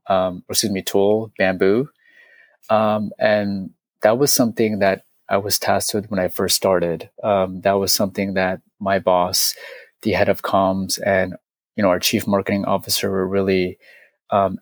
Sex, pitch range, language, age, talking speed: male, 95-110 Hz, English, 20-39, 170 wpm